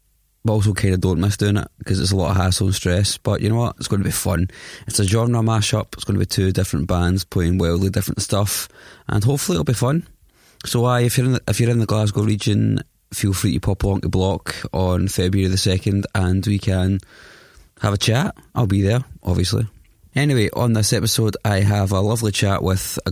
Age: 20-39